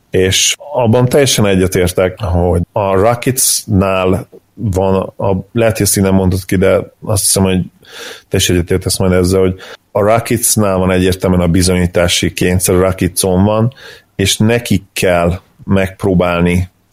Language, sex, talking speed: Hungarian, male, 135 wpm